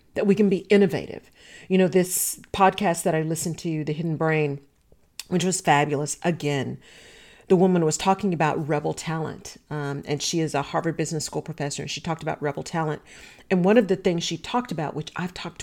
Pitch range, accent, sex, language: 160-205 Hz, American, female, English